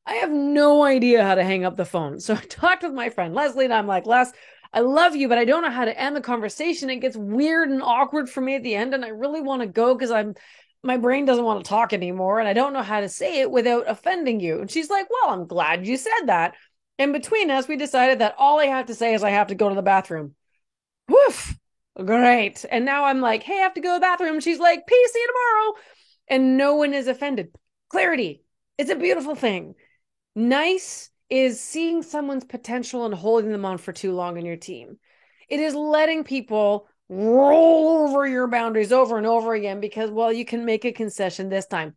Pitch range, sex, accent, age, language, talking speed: 215-295 Hz, female, American, 30-49, English, 235 wpm